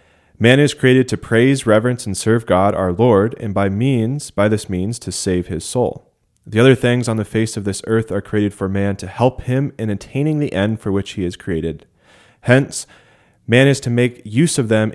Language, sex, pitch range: English, male, 95-115 Hz